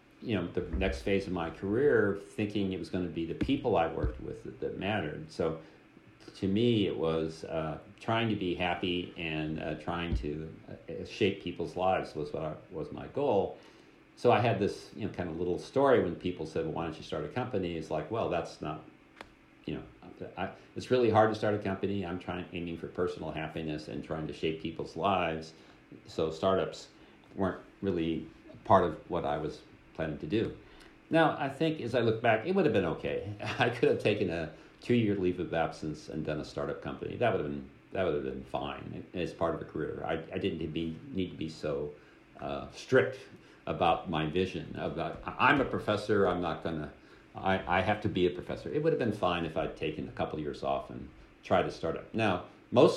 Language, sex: English, male